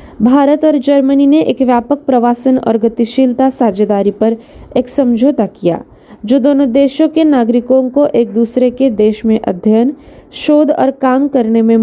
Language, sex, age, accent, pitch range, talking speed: Marathi, female, 20-39, native, 225-280 Hz, 155 wpm